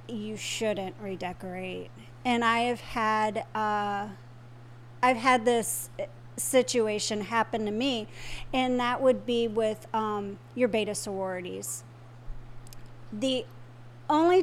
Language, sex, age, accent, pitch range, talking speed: English, female, 40-59, American, 200-250 Hz, 110 wpm